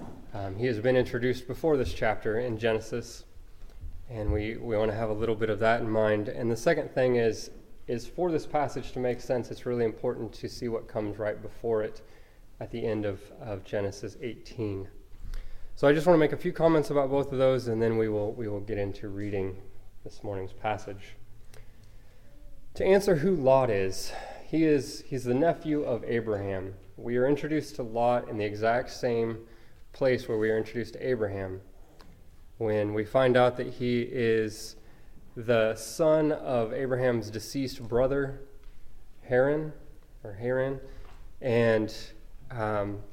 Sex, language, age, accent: male, English, 20-39, American